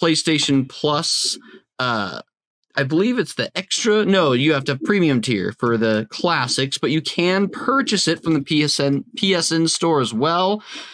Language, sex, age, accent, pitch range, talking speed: English, male, 20-39, American, 135-175 Hz, 165 wpm